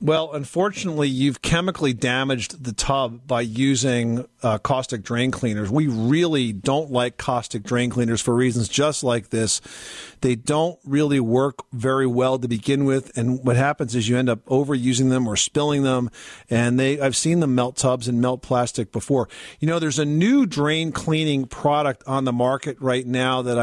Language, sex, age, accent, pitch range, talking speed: English, male, 40-59, American, 125-155 Hz, 180 wpm